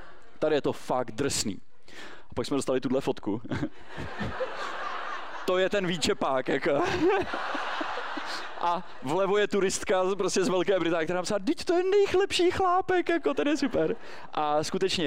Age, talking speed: 20-39, 150 wpm